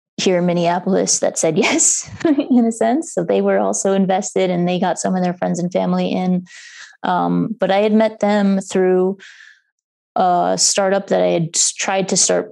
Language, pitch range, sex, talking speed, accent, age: English, 170-200 Hz, female, 185 wpm, American, 20-39